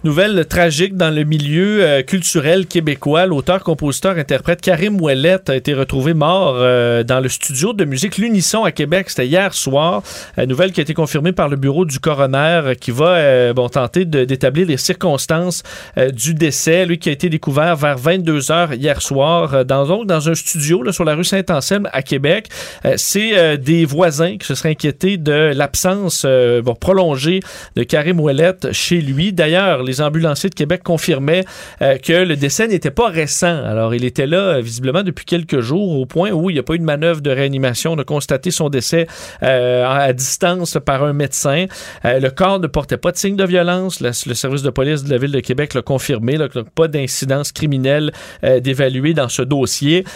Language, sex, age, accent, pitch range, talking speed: French, male, 40-59, Canadian, 135-175 Hz, 185 wpm